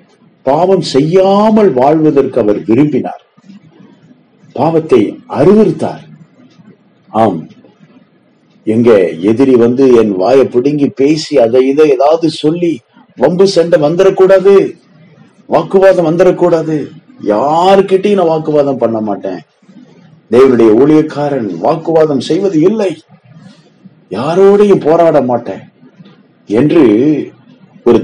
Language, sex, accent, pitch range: Tamil, male, native, 125-185 Hz